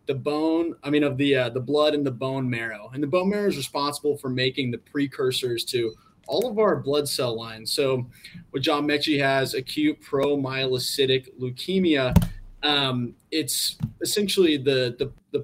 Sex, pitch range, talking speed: male, 120-150 Hz, 170 wpm